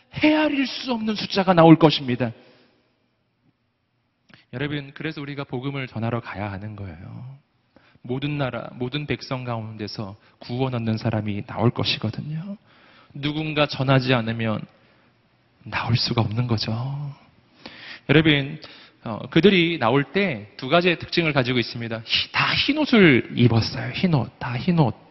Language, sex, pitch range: Korean, male, 115-155 Hz